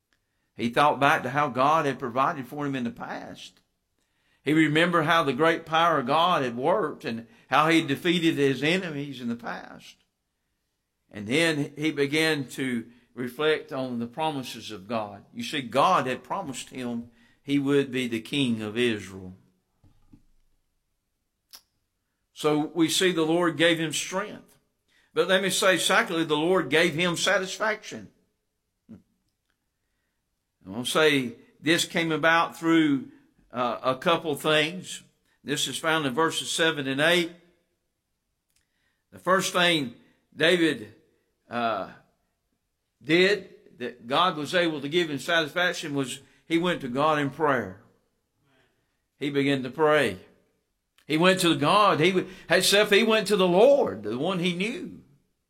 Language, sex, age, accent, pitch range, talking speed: English, male, 50-69, American, 135-175 Hz, 145 wpm